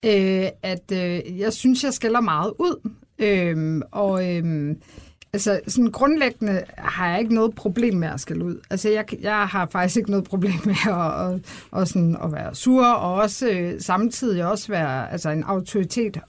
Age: 60-79